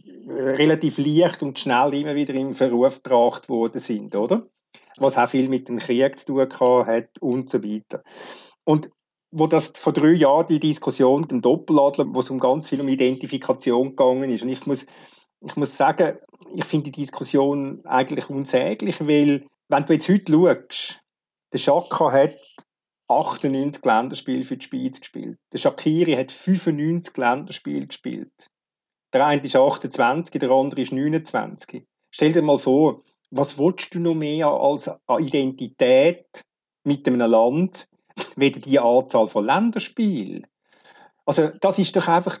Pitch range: 135-175 Hz